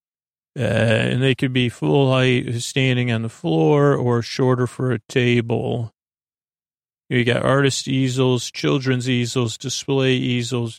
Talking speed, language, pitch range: 135 wpm, English, 120-140 Hz